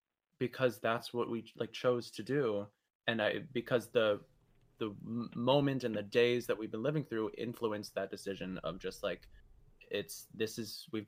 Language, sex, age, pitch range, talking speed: English, male, 20-39, 110-130 Hz, 175 wpm